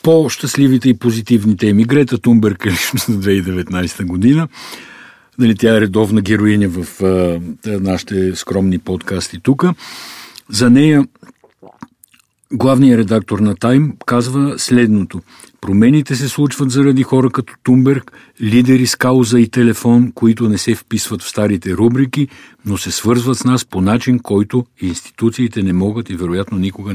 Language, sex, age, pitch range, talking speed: Bulgarian, male, 60-79, 95-125 Hz, 140 wpm